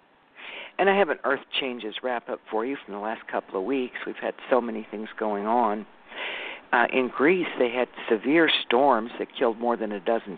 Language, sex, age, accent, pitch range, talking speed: English, male, 50-69, American, 115-130 Hz, 200 wpm